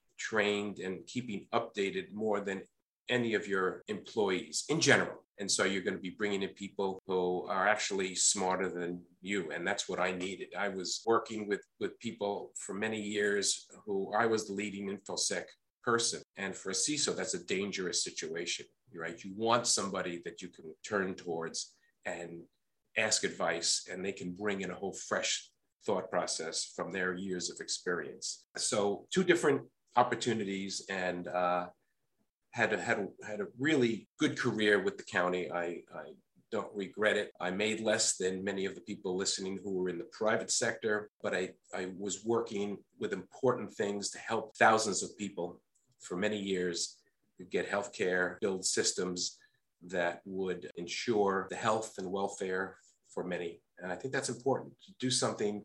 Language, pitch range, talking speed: English, 90-110 Hz, 170 wpm